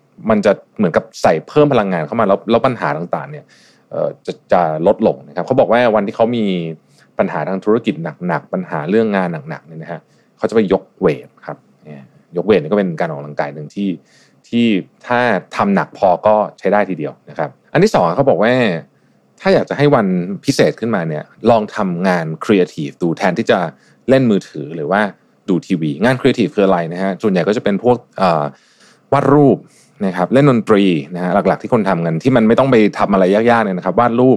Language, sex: Thai, male